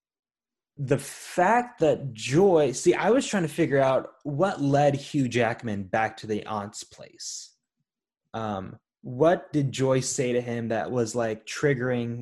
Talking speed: 150 wpm